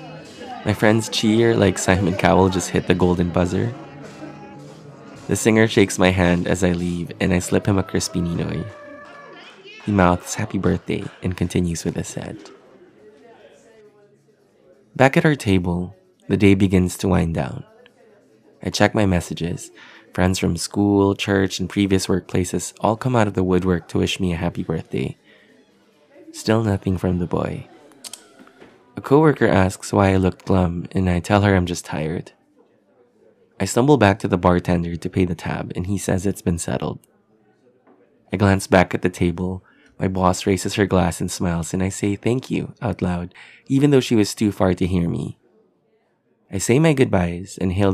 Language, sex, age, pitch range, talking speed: English, male, 20-39, 90-105 Hz, 175 wpm